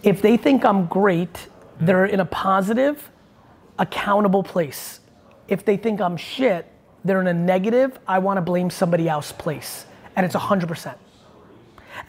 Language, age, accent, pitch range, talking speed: English, 30-49, American, 185-250 Hz, 145 wpm